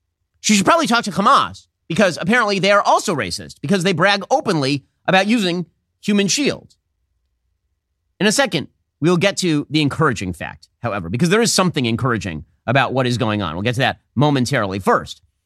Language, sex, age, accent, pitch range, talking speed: English, male, 30-49, American, 115-185 Hz, 180 wpm